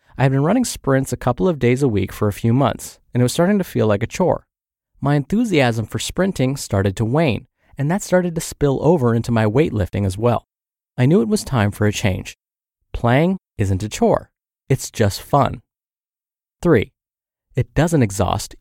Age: 30-49